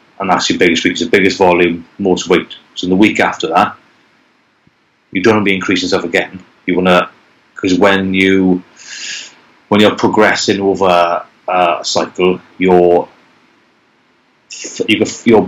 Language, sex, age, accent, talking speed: English, male, 30-49, British, 150 wpm